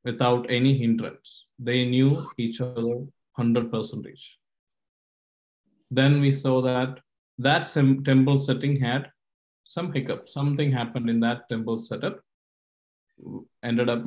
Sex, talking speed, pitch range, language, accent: male, 110 wpm, 115-130 Hz, English, Indian